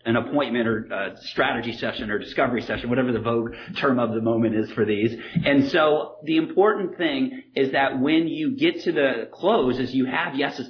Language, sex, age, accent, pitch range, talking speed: English, male, 30-49, American, 115-145 Hz, 200 wpm